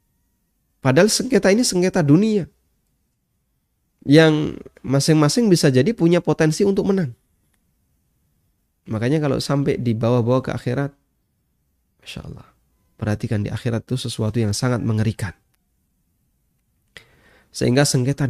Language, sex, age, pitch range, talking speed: Indonesian, male, 20-39, 105-135 Hz, 105 wpm